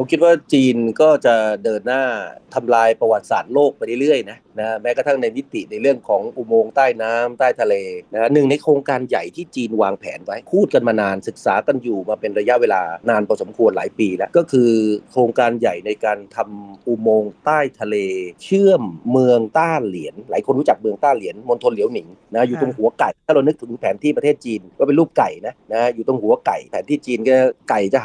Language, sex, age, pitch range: Thai, male, 30-49, 115-150 Hz